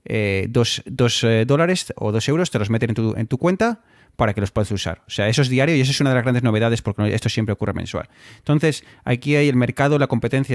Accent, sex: Spanish, male